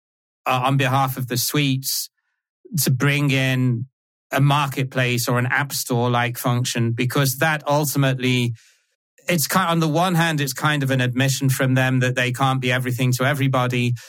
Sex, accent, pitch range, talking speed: male, British, 125-140 Hz, 165 wpm